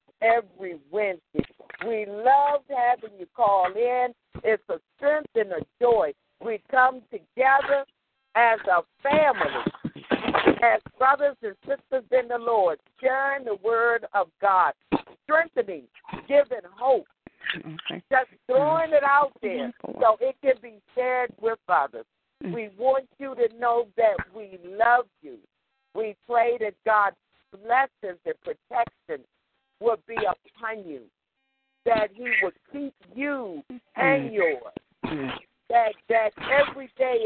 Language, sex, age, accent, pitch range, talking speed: English, female, 50-69, American, 215-265 Hz, 125 wpm